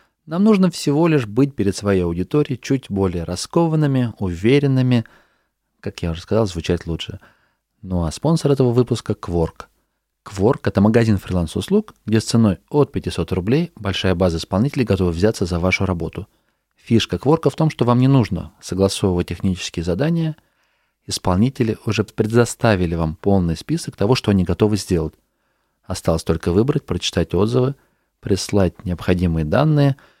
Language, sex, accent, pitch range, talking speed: Russian, male, native, 90-125 Hz, 145 wpm